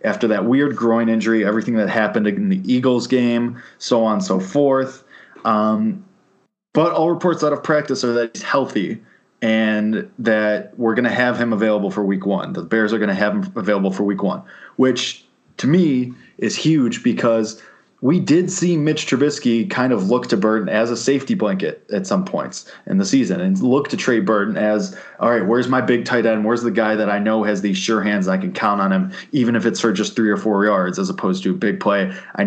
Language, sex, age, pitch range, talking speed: English, male, 20-39, 105-140 Hz, 220 wpm